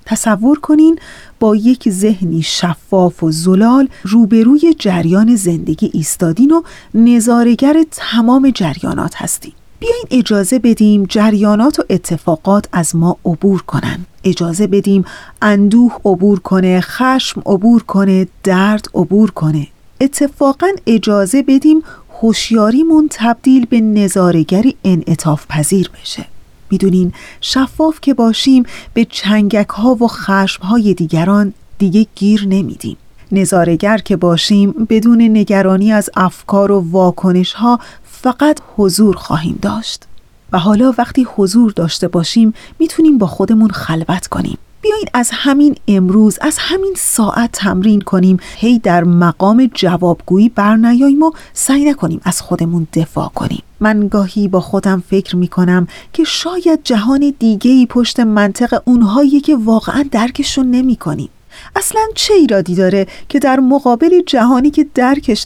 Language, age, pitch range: Persian, 30-49, 190-255 Hz